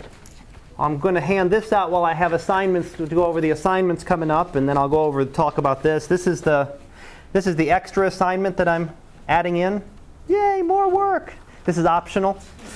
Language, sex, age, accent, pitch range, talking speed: English, male, 30-49, American, 135-180 Hz, 200 wpm